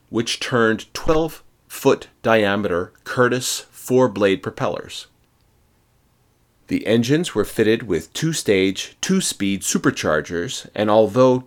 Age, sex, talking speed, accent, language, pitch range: 30-49, male, 85 wpm, American, English, 100-135 Hz